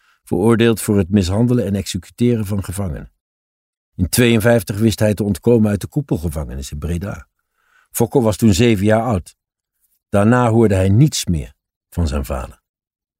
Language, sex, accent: Dutch, male, Dutch